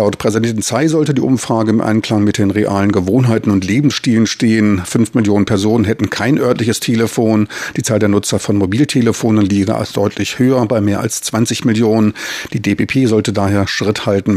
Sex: male